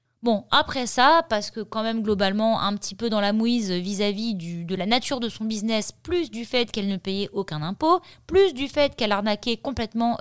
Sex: female